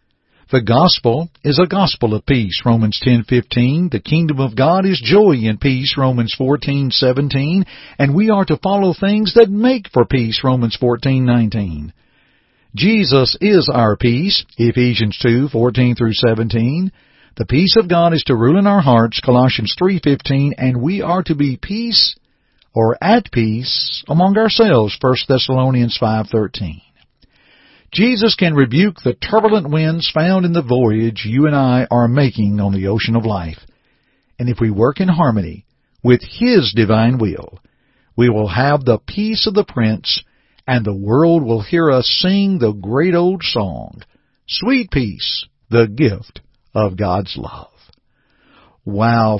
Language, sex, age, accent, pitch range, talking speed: English, male, 50-69, American, 110-160 Hz, 155 wpm